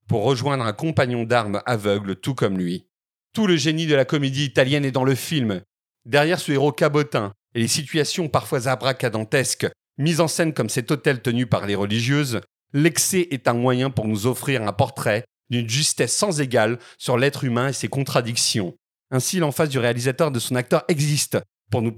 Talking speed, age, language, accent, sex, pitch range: 190 wpm, 40-59, French, French, male, 115-150 Hz